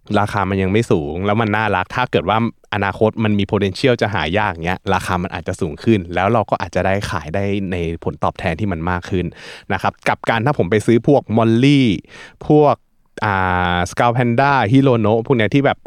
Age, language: 20-39, Thai